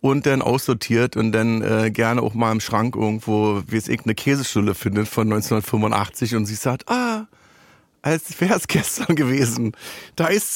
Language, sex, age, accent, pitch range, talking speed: German, male, 40-59, German, 120-160 Hz, 170 wpm